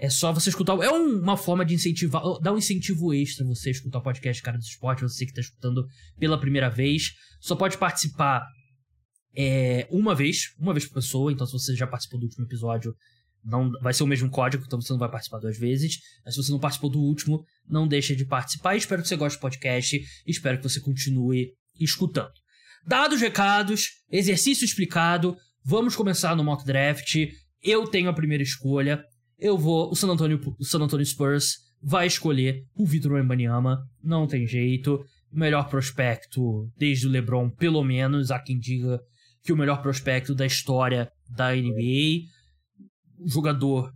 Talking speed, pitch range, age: 175 wpm, 125-155 Hz, 20-39